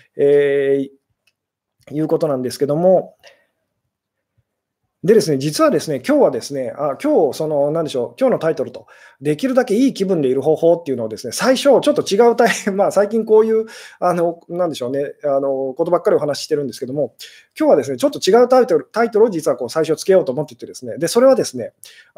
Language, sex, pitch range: Japanese, male, 150-235 Hz